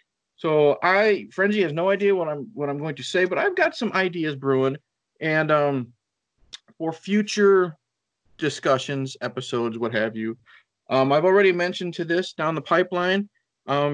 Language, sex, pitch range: English, male, 135-185 Hz